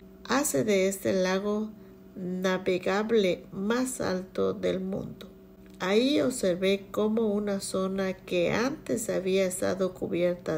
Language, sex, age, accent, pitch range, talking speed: Spanish, female, 50-69, American, 125-205 Hz, 110 wpm